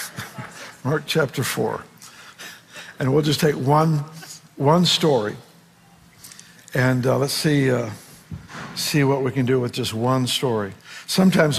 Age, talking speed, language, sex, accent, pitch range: 60-79, 130 wpm, English, male, American, 135-165 Hz